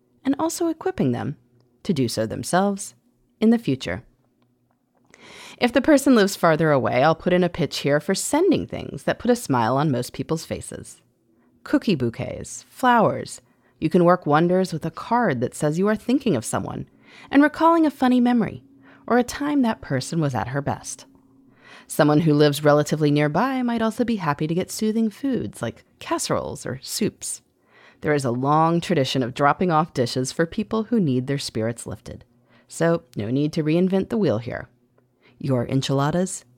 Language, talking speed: English, 175 wpm